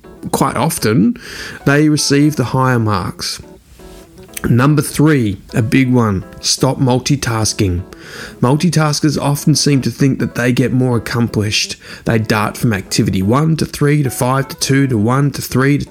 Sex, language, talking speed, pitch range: male, English, 150 wpm, 115-150 Hz